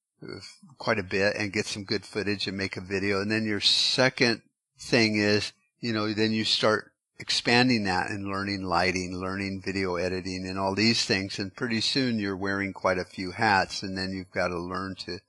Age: 50-69